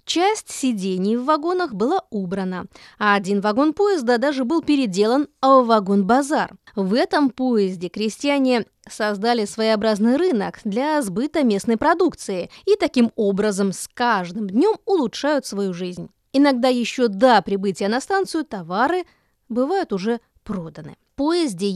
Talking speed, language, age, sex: 130 wpm, Russian, 20-39, female